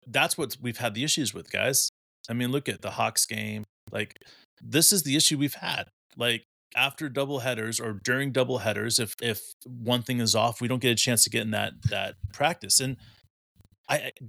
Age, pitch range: 30-49, 105-130 Hz